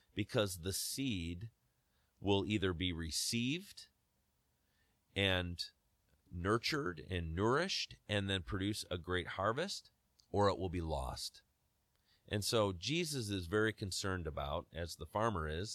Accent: American